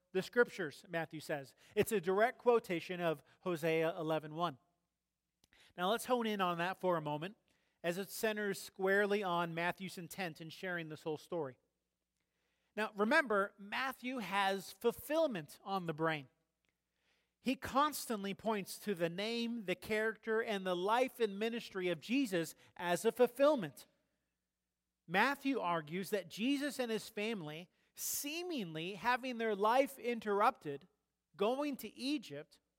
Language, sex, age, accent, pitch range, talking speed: English, male, 40-59, American, 170-215 Hz, 135 wpm